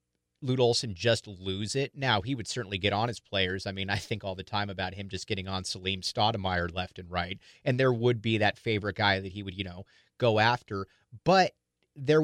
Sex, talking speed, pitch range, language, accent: male, 225 wpm, 105-130 Hz, English, American